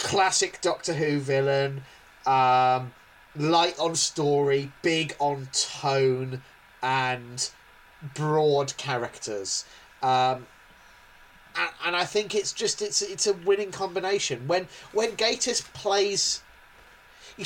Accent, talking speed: British, 105 wpm